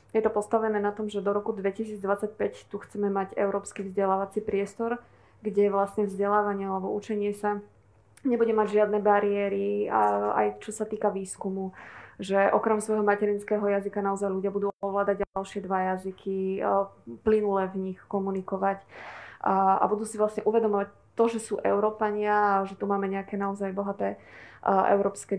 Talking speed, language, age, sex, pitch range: 150 wpm, Slovak, 20-39, female, 195-210 Hz